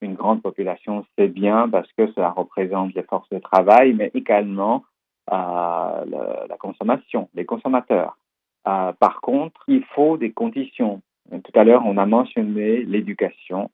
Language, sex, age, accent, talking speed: French, male, 50-69, French, 150 wpm